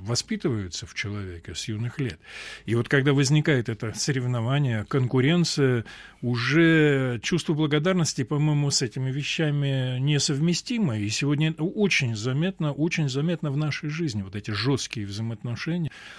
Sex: male